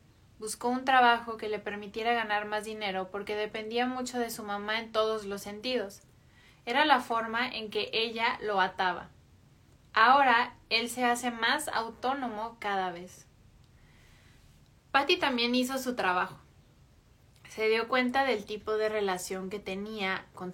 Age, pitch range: 20-39, 205-245 Hz